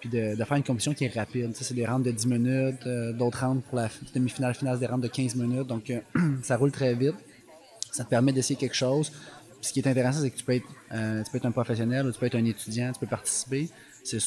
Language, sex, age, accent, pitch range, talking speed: French, male, 20-39, Canadian, 115-130 Hz, 285 wpm